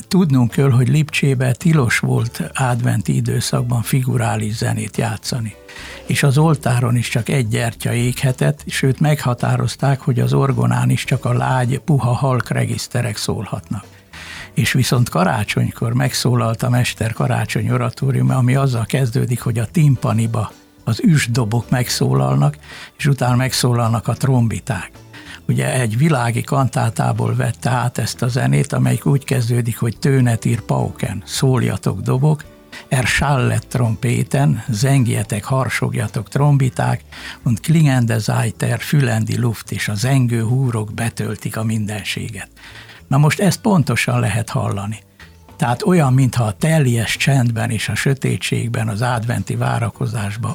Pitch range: 110-135 Hz